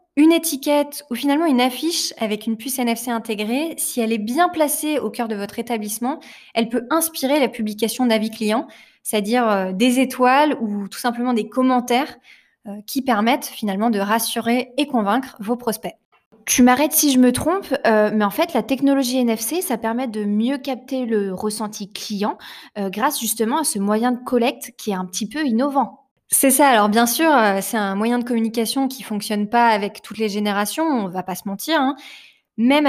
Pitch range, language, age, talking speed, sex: 210-265 Hz, French, 20-39, 190 wpm, female